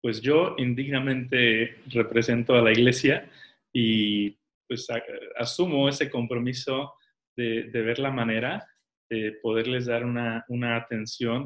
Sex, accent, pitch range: male, Mexican, 115-145 Hz